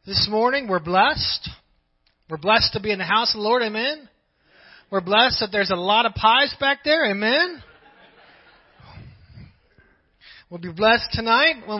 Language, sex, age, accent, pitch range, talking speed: English, male, 30-49, American, 185-235 Hz, 160 wpm